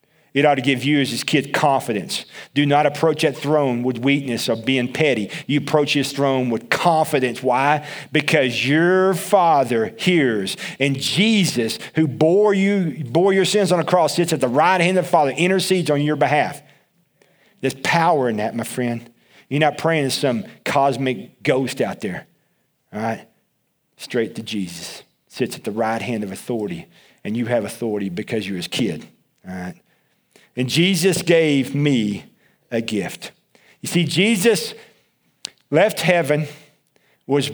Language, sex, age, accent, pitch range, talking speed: English, male, 40-59, American, 130-170 Hz, 165 wpm